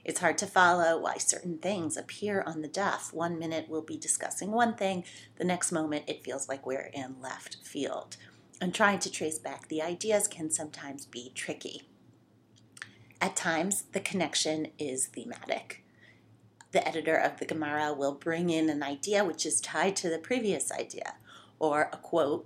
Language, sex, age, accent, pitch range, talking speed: English, female, 30-49, American, 150-185 Hz, 175 wpm